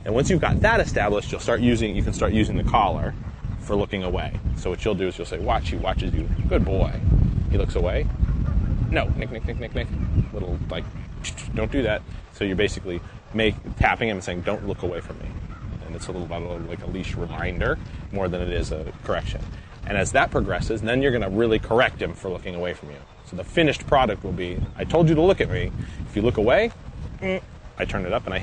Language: English